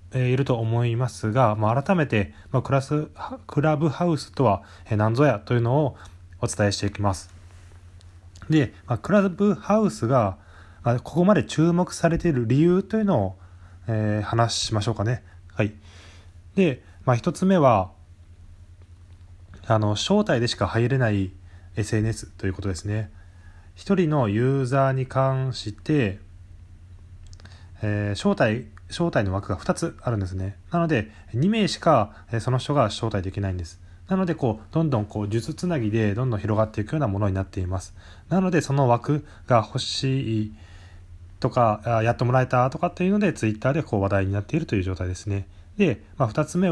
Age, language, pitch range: 20-39, Japanese, 95-140 Hz